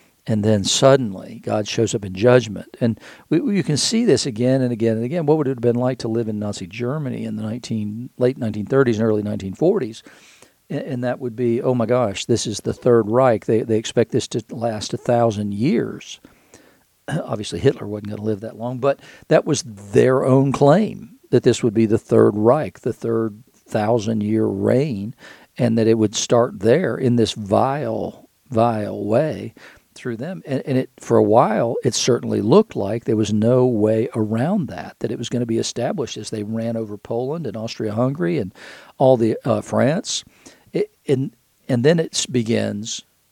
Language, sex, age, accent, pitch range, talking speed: English, male, 50-69, American, 110-125 Hz, 195 wpm